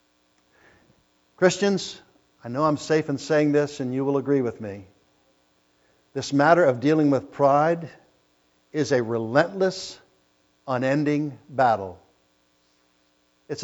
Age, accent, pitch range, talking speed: 60-79, American, 95-145 Hz, 115 wpm